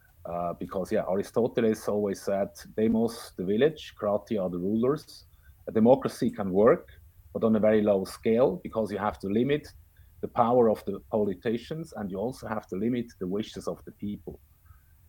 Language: English